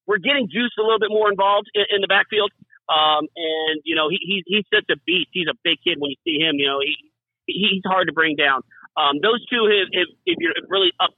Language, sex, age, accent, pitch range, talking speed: English, male, 40-59, American, 160-215 Hz, 245 wpm